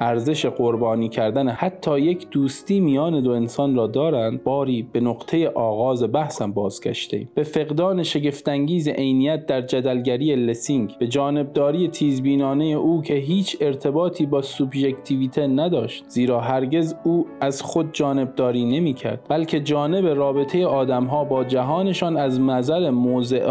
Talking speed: 130 wpm